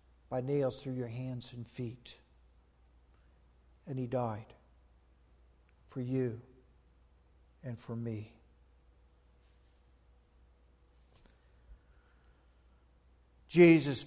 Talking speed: 70 wpm